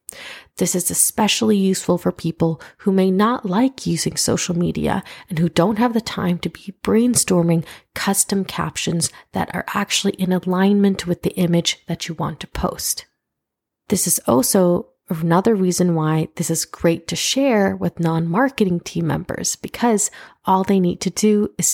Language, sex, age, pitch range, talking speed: English, female, 30-49, 165-200 Hz, 165 wpm